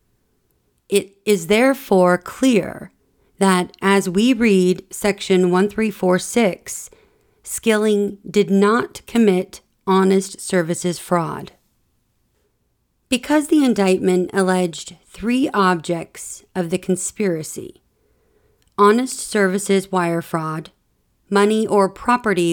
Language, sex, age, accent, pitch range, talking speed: English, female, 40-59, American, 180-210 Hz, 85 wpm